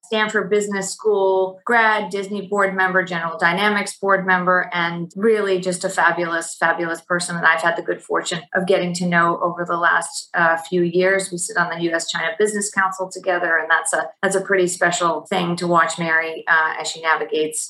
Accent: American